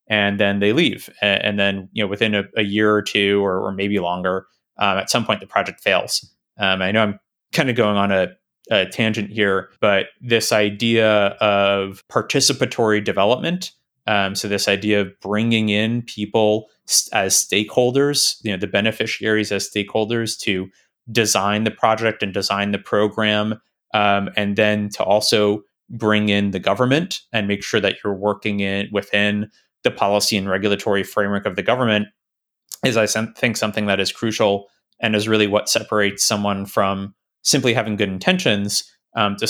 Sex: male